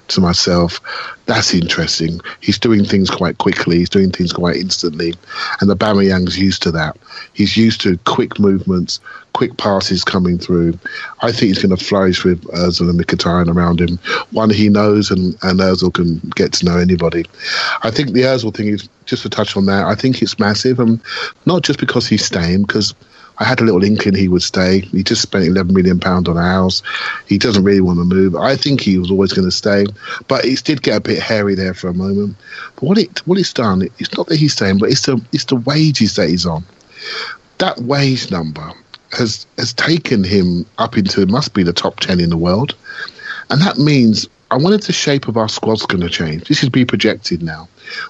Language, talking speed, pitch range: English, 215 wpm, 90-125 Hz